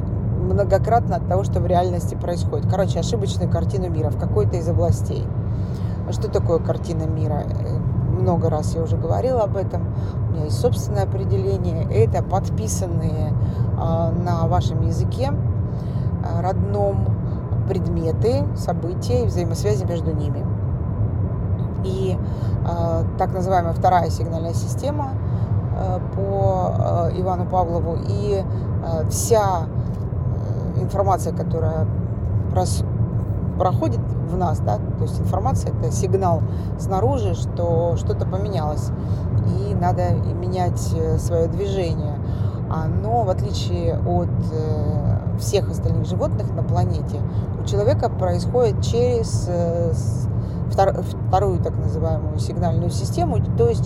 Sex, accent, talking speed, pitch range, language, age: female, native, 110 wpm, 100-115 Hz, Russian, 30-49